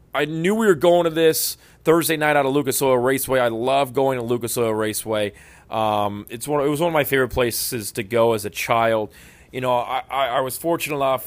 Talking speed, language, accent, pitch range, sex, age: 235 wpm, English, American, 105-130 Hz, male, 30-49